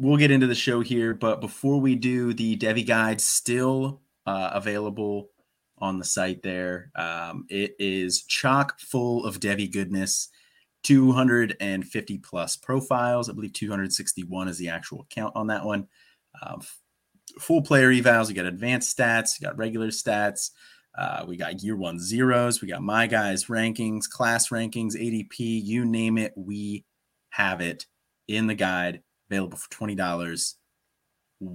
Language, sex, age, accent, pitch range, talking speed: English, male, 30-49, American, 100-125 Hz, 150 wpm